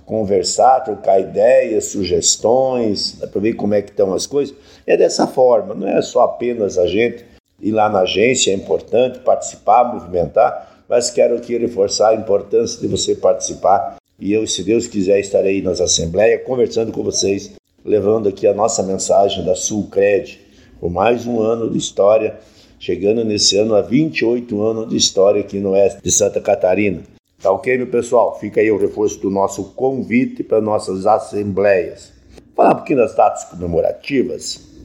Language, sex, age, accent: Portuguese, male, 60-79, Brazilian